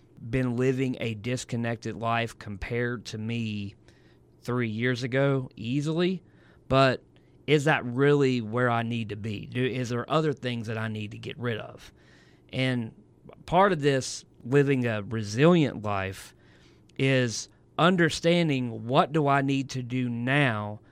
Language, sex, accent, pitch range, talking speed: English, male, American, 115-145 Hz, 140 wpm